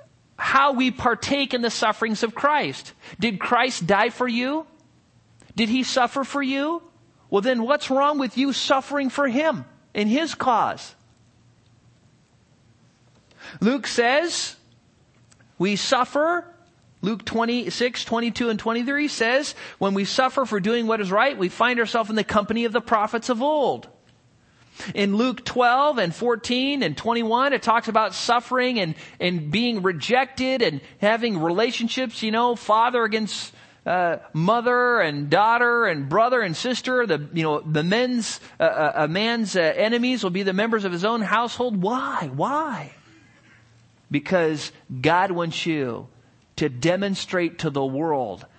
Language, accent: English, American